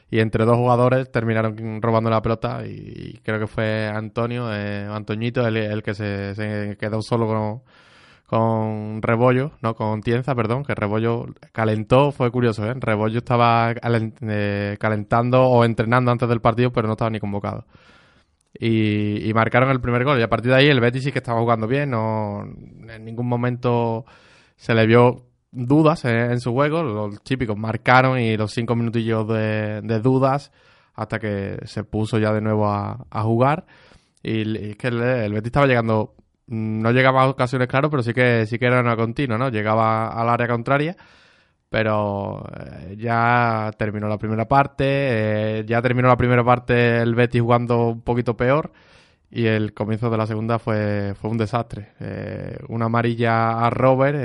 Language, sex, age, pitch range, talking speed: Spanish, male, 20-39, 110-125 Hz, 175 wpm